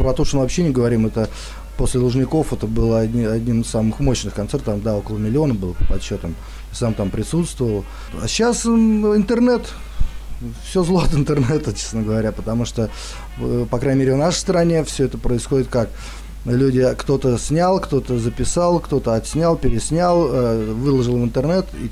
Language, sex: Russian, male